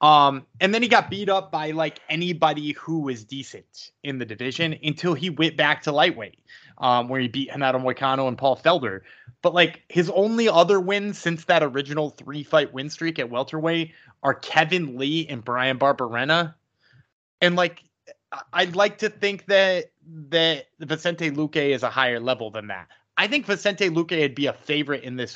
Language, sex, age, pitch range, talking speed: English, male, 20-39, 130-170 Hz, 180 wpm